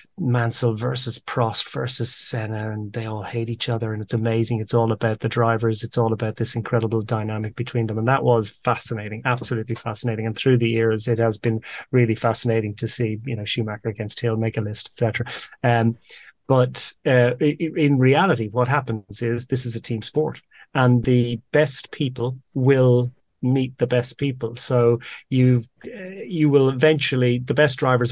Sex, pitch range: male, 110-125 Hz